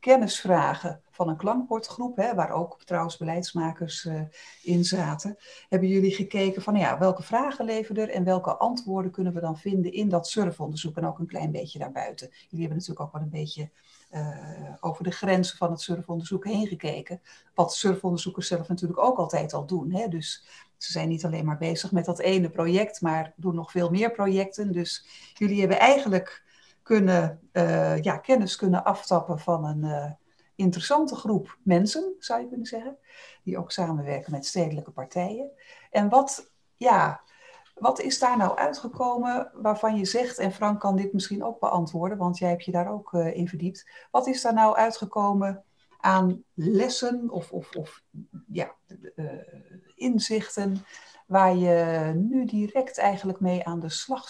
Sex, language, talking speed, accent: female, Dutch, 165 wpm, Dutch